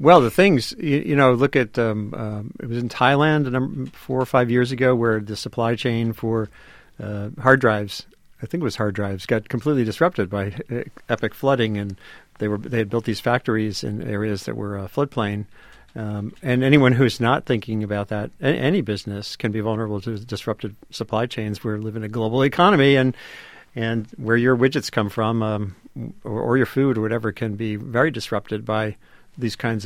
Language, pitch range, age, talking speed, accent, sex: English, 110-135 Hz, 50-69, 195 wpm, American, male